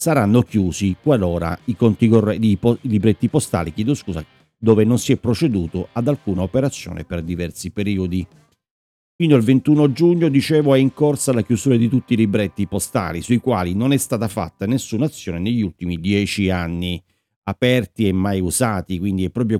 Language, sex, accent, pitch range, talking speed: Italian, male, native, 90-115 Hz, 170 wpm